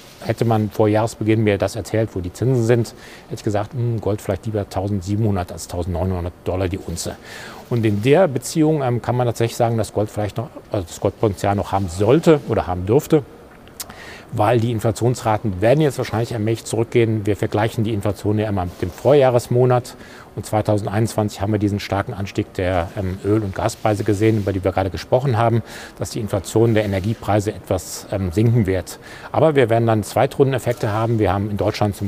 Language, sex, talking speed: German, male, 185 wpm